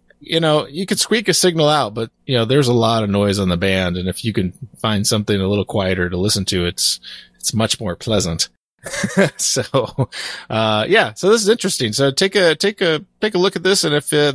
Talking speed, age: 235 wpm, 30-49